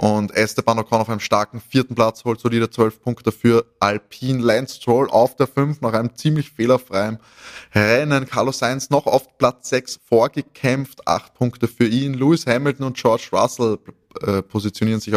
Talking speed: 170 wpm